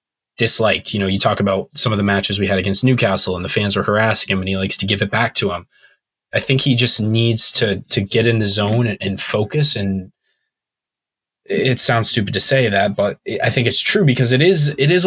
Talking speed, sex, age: 240 wpm, male, 20-39